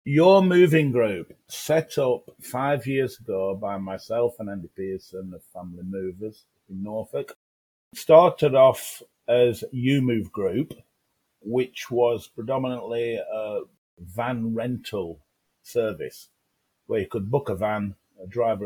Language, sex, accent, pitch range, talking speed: English, male, British, 95-130 Hz, 125 wpm